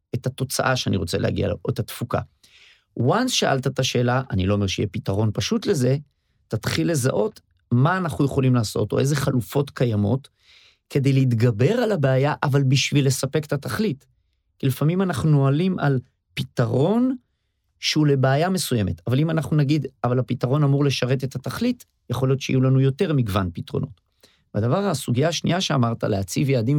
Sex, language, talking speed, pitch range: male, Hebrew, 155 wpm, 110-145 Hz